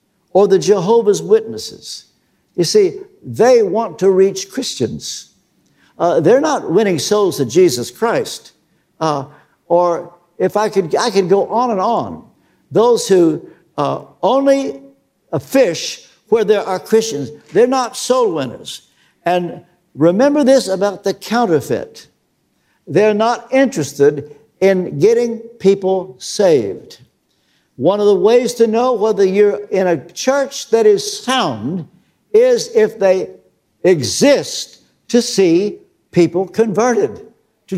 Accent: American